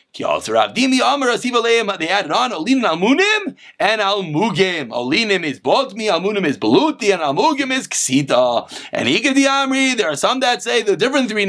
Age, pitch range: 30-49, 205-270 Hz